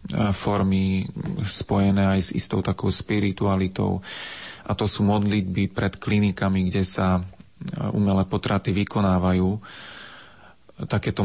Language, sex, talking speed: Slovak, male, 100 wpm